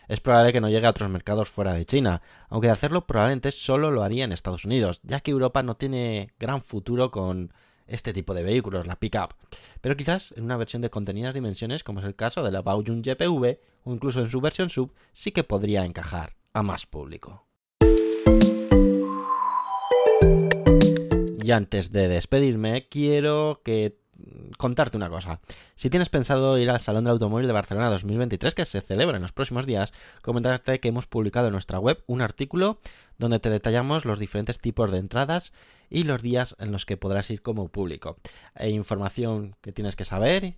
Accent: Spanish